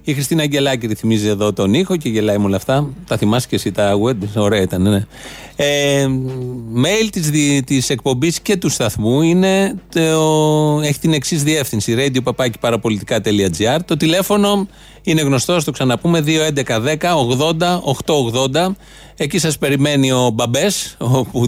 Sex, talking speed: male, 140 wpm